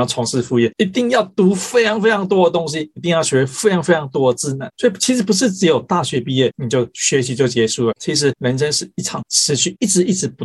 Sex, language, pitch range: male, Chinese, 125-190 Hz